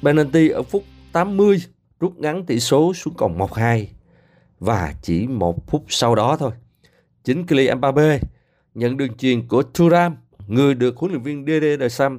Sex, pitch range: male, 110-155 Hz